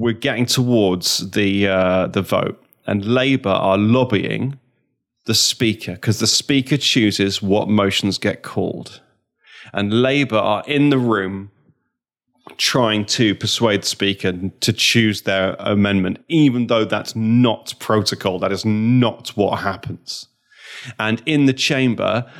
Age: 30-49